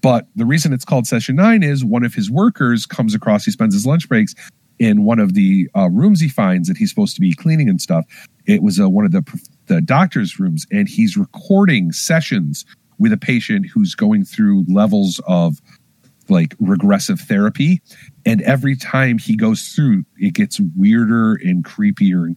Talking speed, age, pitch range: 190 wpm, 40-59, 155-205 Hz